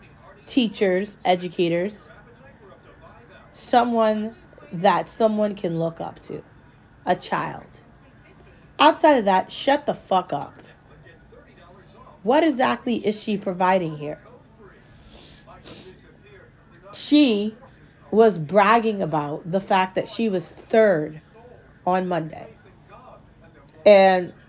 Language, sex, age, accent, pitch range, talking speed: English, female, 40-59, American, 175-215 Hz, 90 wpm